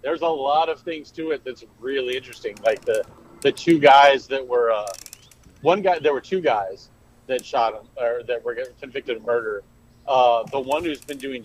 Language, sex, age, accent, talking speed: English, male, 40-59, American, 210 wpm